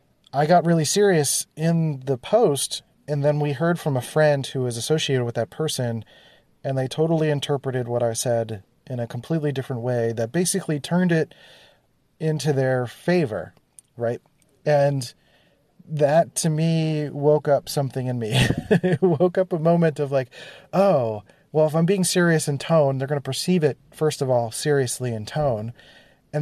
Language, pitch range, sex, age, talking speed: English, 130-160 Hz, male, 30-49, 175 wpm